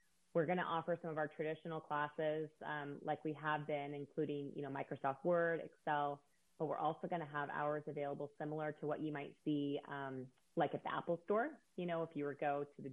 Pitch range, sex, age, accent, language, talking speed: 140-155 Hz, female, 20-39, American, English, 230 wpm